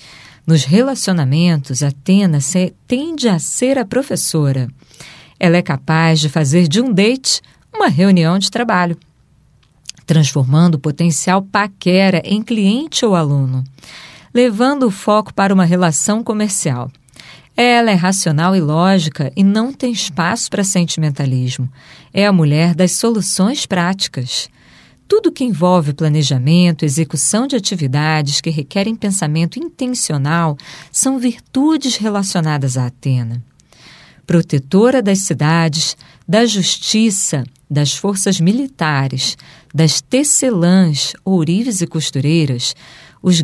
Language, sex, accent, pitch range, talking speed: Portuguese, female, Brazilian, 150-205 Hz, 115 wpm